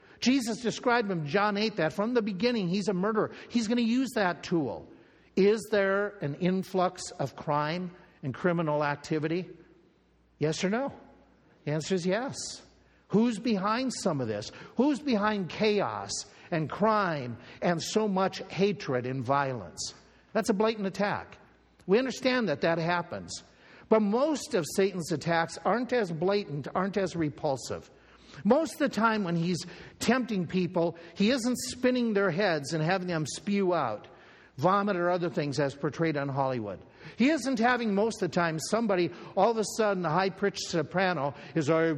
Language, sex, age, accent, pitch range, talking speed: English, male, 60-79, American, 160-215 Hz, 160 wpm